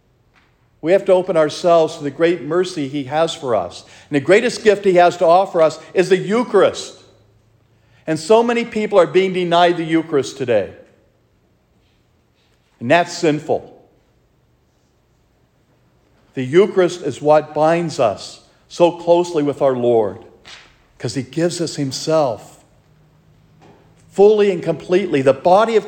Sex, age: male, 50-69